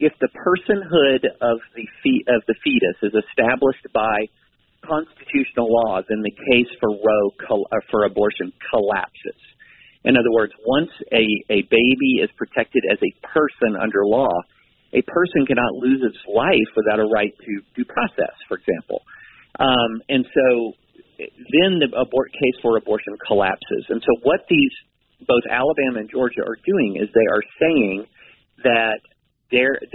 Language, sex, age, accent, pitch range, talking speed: English, male, 40-59, American, 110-150 Hz, 150 wpm